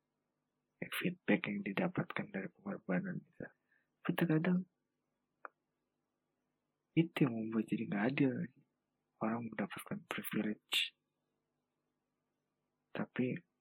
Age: 20-39